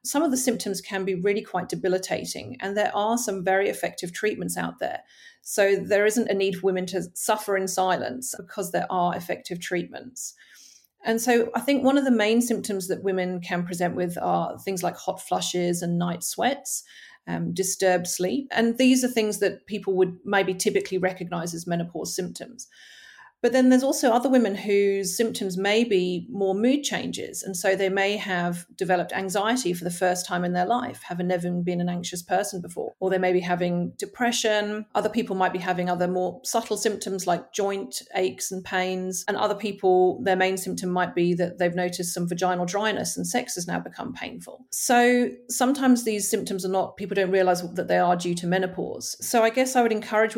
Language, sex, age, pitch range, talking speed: English, female, 40-59, 180-215 Hz, 200 wpm